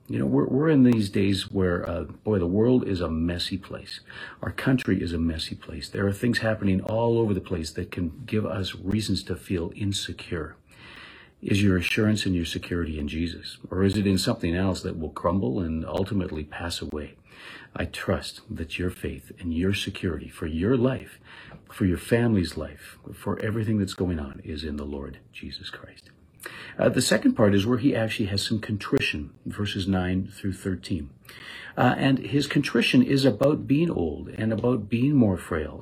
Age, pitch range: 50-69, 90-120 Hz